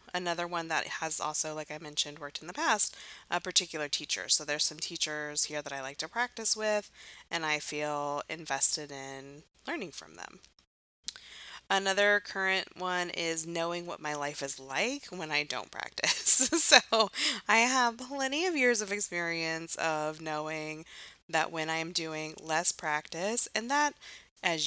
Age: 20-39